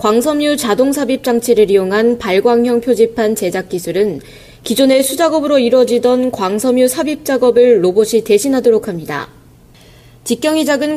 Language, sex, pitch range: Korean, female, 215-280 Hz